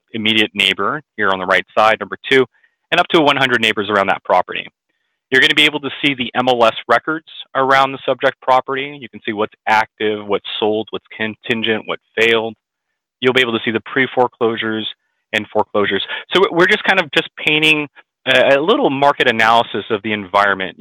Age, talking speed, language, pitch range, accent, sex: 30-49, 190 wpm, English, 105-135 Hz, American, male